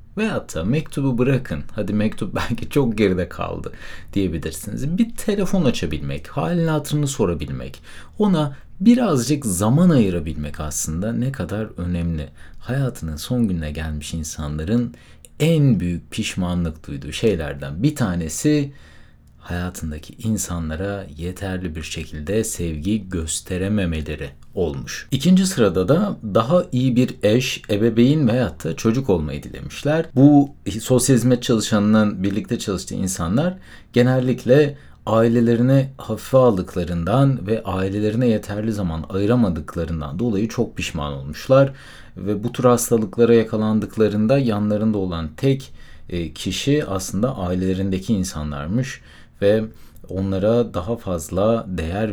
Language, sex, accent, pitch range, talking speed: Turkish, male, native, 85-120 Hz, 110 wpm